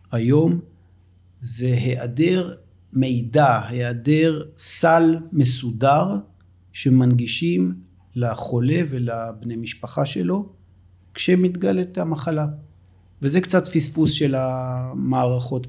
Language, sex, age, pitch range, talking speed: Hebrew, male, 50-69, 120-155 Hz, 75 wpm